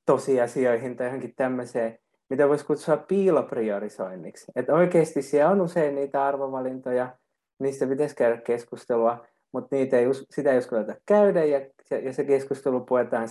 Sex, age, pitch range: male, 20-39, 125-150 Hz